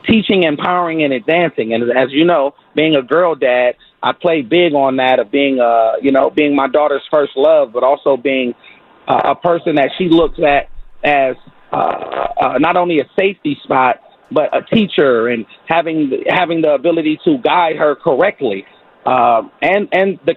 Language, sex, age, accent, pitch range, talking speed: English, male, 40-59, American, 140-165 Hz, 185 wpm